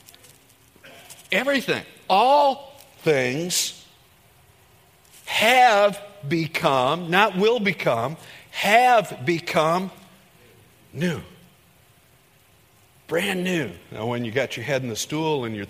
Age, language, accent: 50-69, English, American